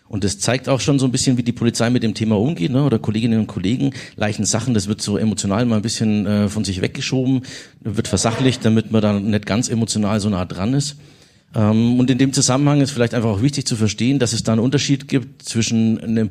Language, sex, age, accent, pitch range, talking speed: German, male, 50-69, German, 100-125 Hz, 240 wpm